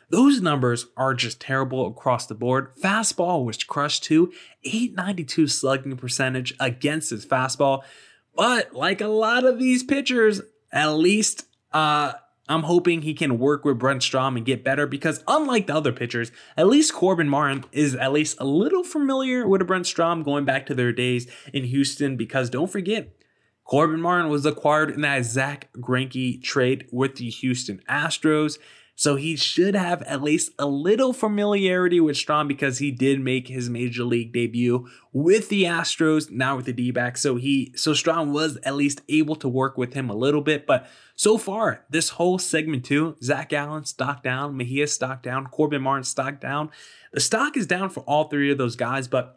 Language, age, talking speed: English, 20-39, 180 wpm